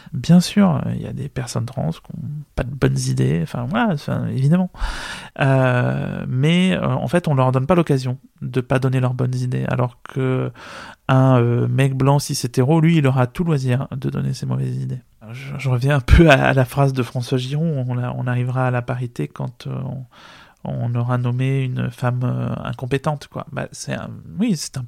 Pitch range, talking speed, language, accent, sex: 130-155 Hz, 210 wpm, French, French, male